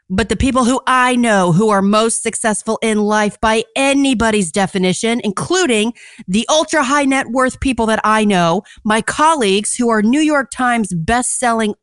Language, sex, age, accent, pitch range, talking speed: English, female, 40-59, American, 195-255 Hz, 165 wpm